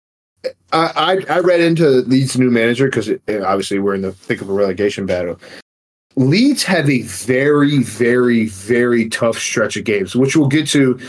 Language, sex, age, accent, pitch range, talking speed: English, male, 30-49, American, 125-155 Hz, 170 wpm